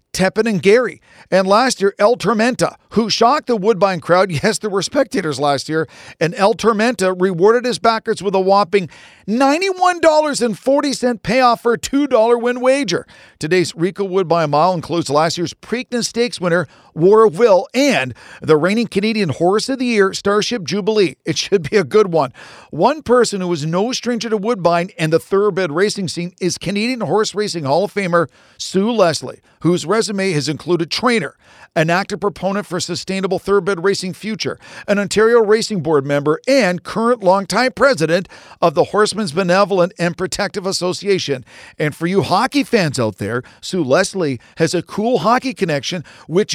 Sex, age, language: male, 50-69, English